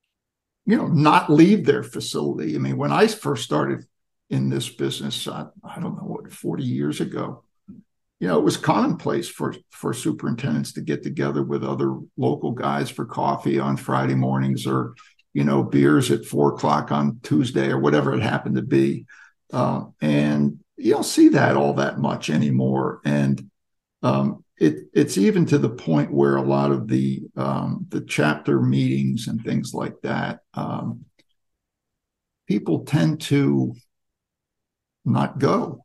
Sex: male